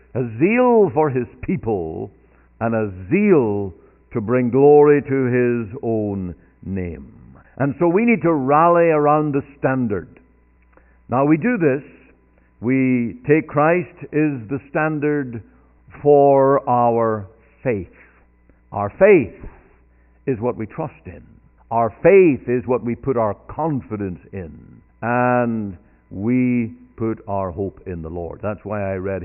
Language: English